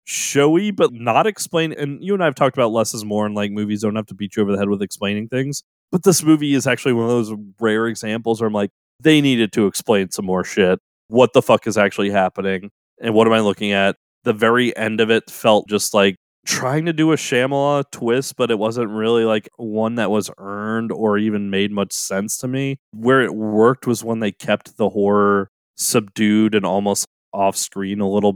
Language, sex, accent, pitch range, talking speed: English, male, American, 100-120 Hz, 220 wpm